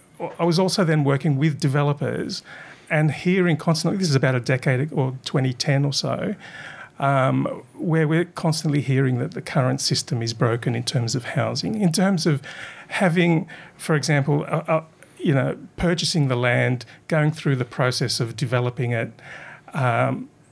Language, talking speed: English, 160 wpm